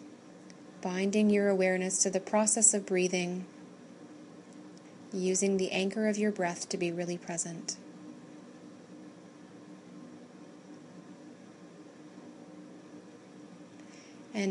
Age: 30-49